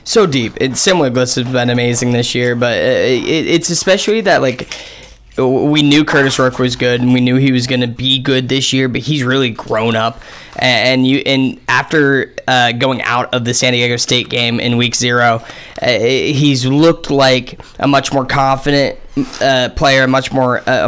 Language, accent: English, American